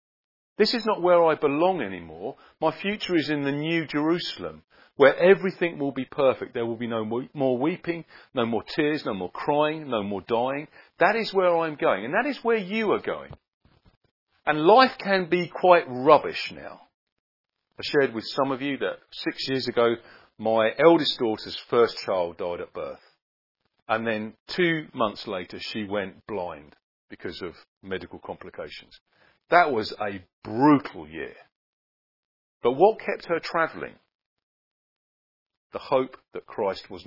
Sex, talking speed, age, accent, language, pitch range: male, 160 wpm, 40-59, British, English, 115-180 Hz